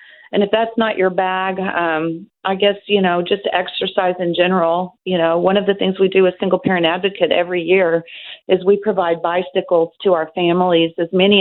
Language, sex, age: English, female, 40-59